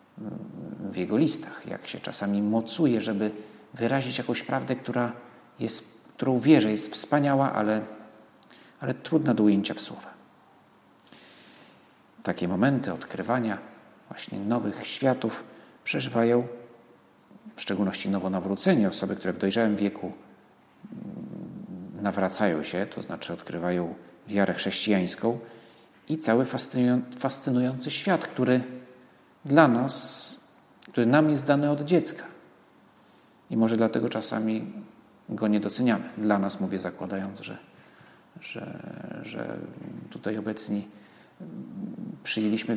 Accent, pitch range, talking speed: native, 100-120 Hz, 105 wpm